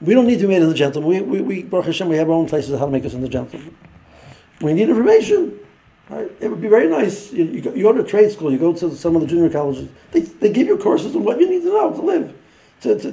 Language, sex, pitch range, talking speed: English, male, 135-185 Hz, 305 wpm